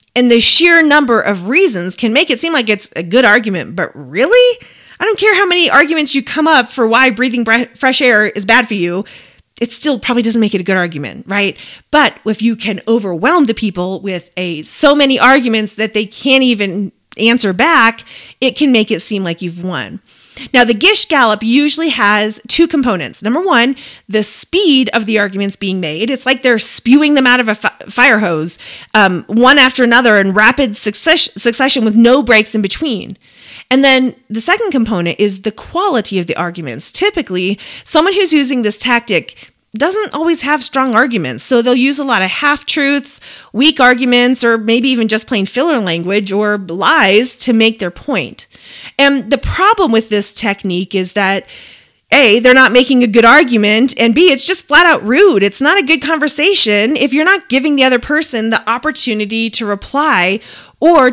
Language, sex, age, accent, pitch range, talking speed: English, female, 30-49, American, 210-280 Hz, 190 wpm